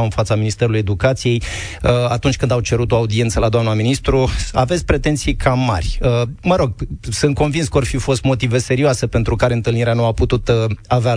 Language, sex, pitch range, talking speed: Romanian, male, 120-150 Hz, 185 wpm